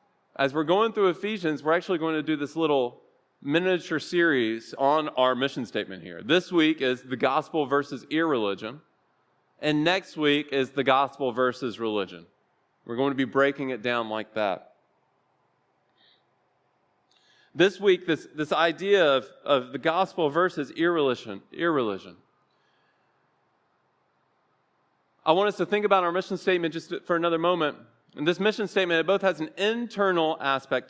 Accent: American